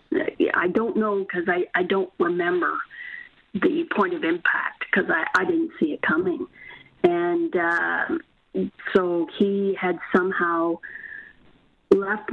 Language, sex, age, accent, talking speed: English, female, 40-59, American, 125 wpm